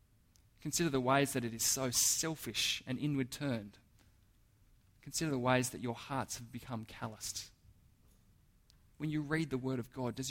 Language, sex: English, male